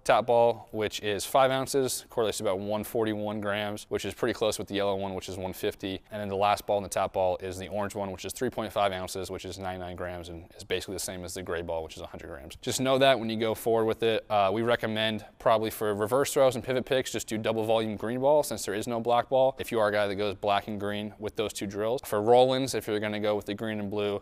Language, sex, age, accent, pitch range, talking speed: English, male, 20-39, American, 100-120 Hz, 280 wpm